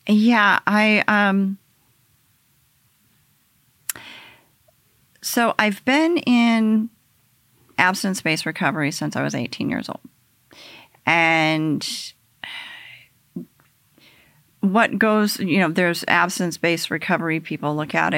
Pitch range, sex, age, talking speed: 140-200 Hz, female, 40-59, 85 wpm